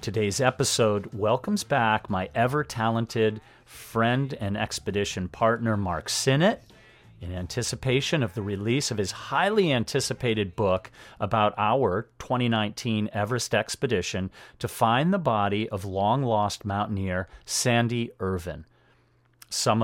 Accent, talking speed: American, 110 wpm